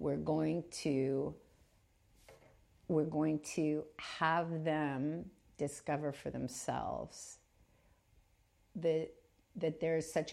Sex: female